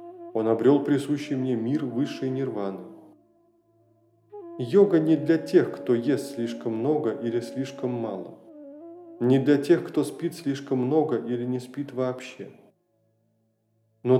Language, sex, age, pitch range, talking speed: Russian, male, 20-39, 115-150 Hz, 125 wpm